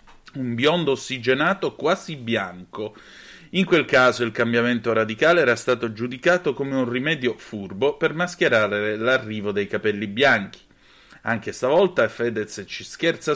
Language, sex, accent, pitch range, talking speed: Italian, male, native, 110-160 Hz, 130 wpm